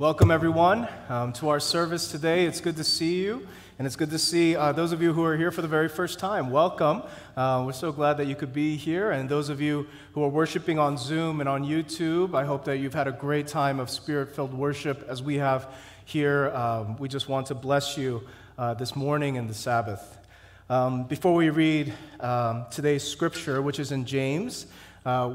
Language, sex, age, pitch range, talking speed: English, male, 30-49, 120-155 Hz, 215 wpm